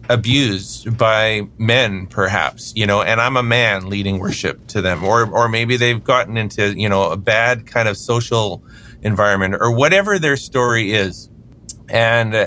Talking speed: 165 wpm